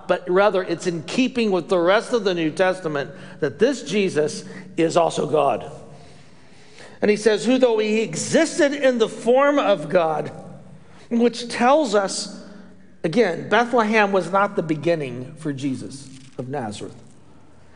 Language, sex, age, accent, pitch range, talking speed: English, male, 50-69, American, 175-245 Hz, 145 wpm